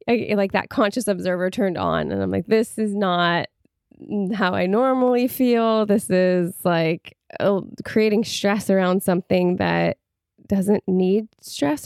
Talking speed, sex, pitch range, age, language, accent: 135 wpm, female, 190-230 Hz, 20-39, English, American